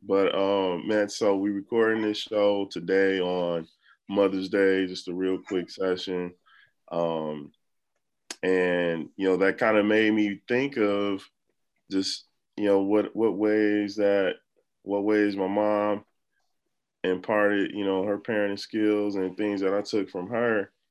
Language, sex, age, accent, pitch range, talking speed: English, male, 20-39, American, 90-105 Hz, 150 wpm